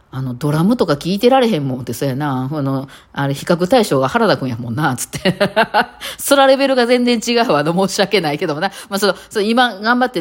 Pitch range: 145-205 Hz